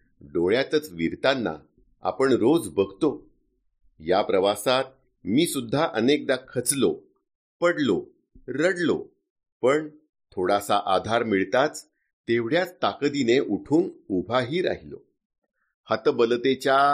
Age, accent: 50-69, native